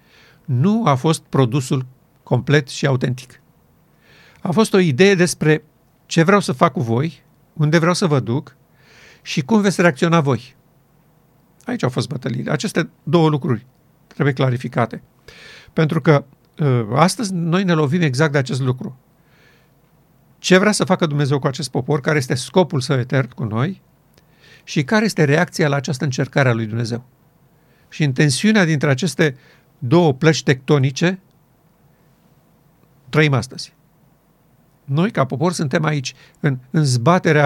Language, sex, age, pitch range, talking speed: Romanian, male, 50-69, 140-170 Hz, 145 wpm